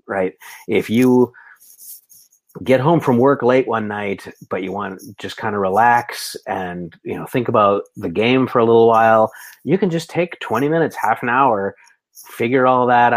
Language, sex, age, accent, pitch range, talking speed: English, male, 30-49, American, 105-130 Hz, 185 wpm